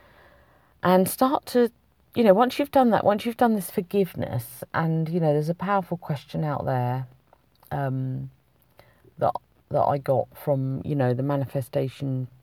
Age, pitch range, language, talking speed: 40-59, 135-170 Hz, English, 160 wpm